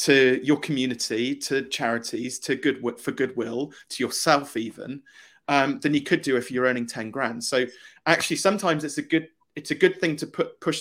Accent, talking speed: British, 195 wpm